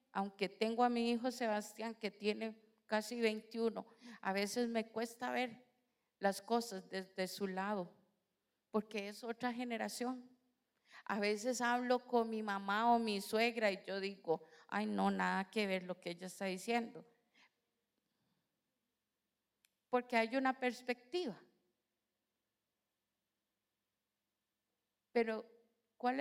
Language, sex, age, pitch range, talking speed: Spanish, female, 50-69, 205-245 Hz, 120 wpm